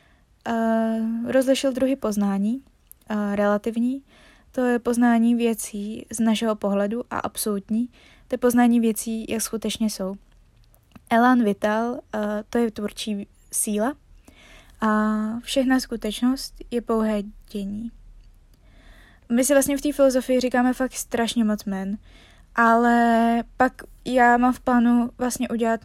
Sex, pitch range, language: female, 210-235 Hz, Czech